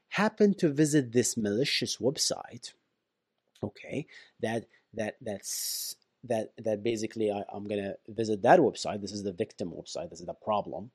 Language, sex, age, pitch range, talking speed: English, male, 30-49, 115-165 Hz, 160 wpm